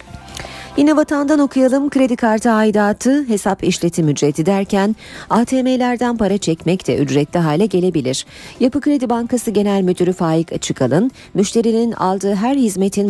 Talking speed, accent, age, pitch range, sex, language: 130 wpm, native, 40-59, 155-225 Hz, female, Turkish